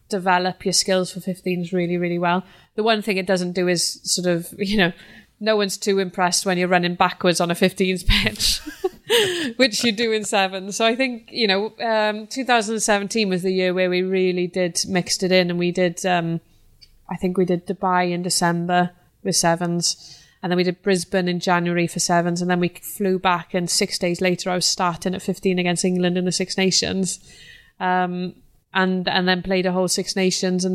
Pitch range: 180-195 Hz